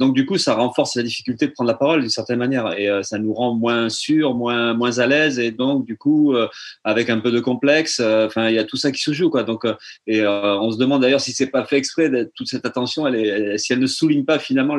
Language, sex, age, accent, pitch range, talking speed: French, male, 30-49, French, 110-140 Hz, 290 wpm